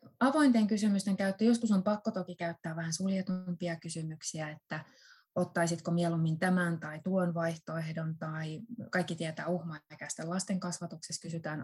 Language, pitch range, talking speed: Finnish, 170-220 Hz, 130 wpm